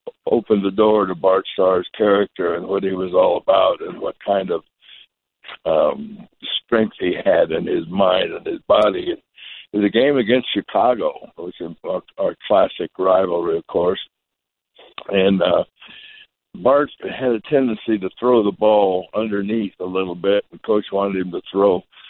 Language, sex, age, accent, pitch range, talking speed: English, male, 60-79, American, 95-125 Hz, 165 wpm